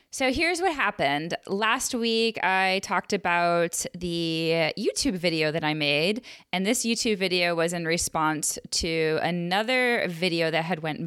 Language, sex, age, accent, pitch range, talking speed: English, female, 20-39, American, 165-220 Hz, 150 wpm